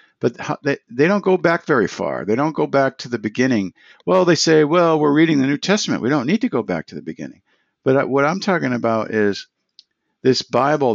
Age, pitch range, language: 50-69, 100-130 Hz, English